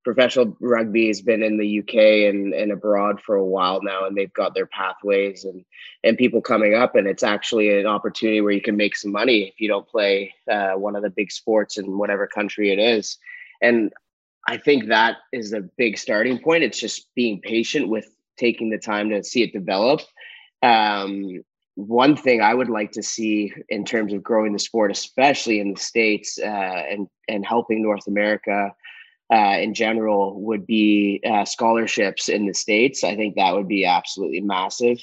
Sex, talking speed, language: male, 190 wpm, English